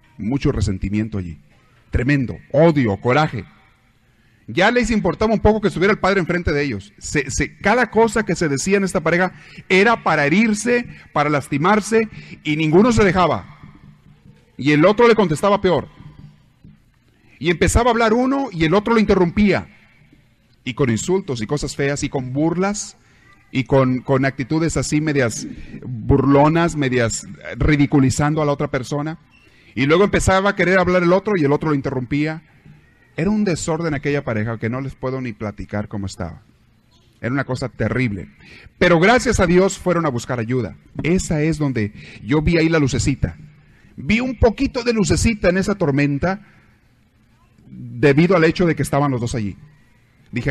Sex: male